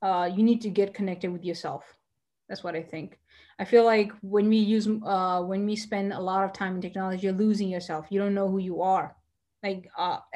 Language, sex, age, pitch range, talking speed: English, female, 20-39, 200-250 Hz, 225 wpm